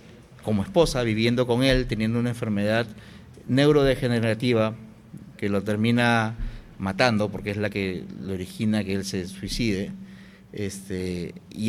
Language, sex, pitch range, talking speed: Spanish, male, 110-150 Hz, 130 wpm